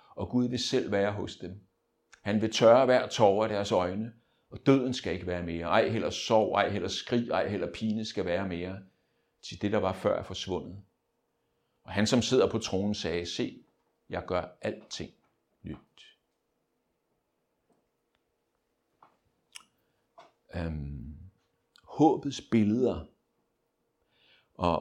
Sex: male